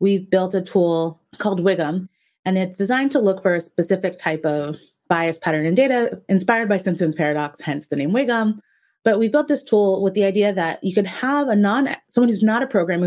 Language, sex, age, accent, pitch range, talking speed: English, female, 20-39, American, 165-210 Hz, 215 wpm